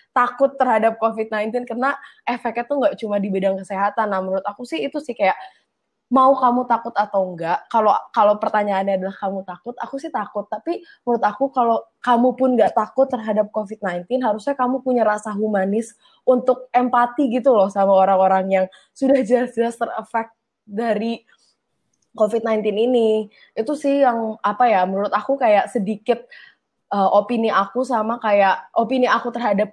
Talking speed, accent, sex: 155 wpm, native, female